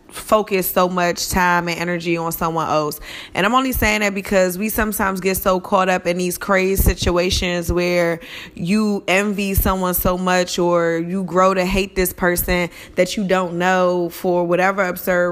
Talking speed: 175 wpm